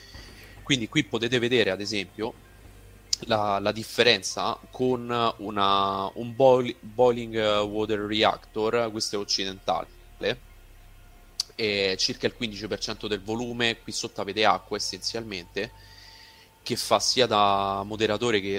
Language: Italian